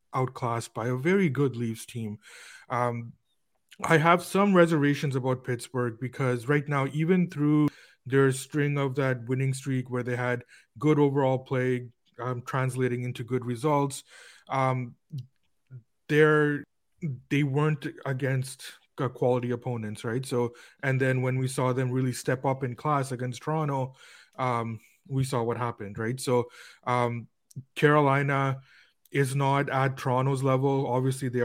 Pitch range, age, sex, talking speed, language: 120-140 Hz, 30-49, male, 140 wpm, English